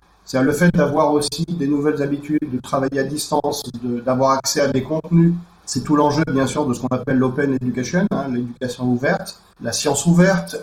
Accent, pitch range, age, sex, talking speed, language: French, 130-170 Hz, 40-59, male, 200 wpm, French